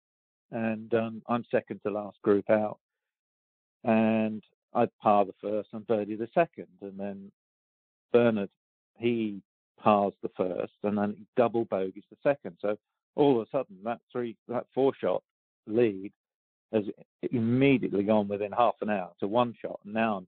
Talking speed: 160 wpm